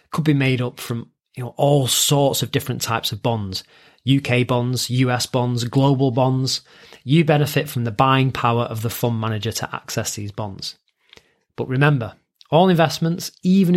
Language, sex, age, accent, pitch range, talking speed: English, male, 30-49, British, 120-150 Hz, 170 wpm